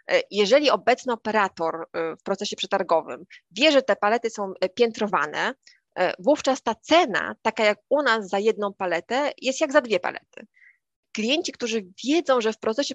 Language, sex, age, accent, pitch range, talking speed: Polish, female, 20-39, native, 200-255 Hz, 155 wpm